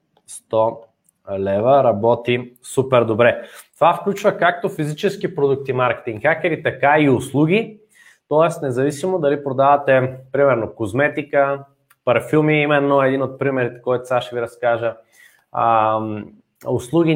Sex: male